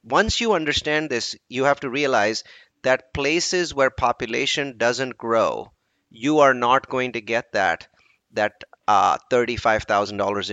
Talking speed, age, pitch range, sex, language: 135 wpm, 30-49, 105-140 Hz, male, English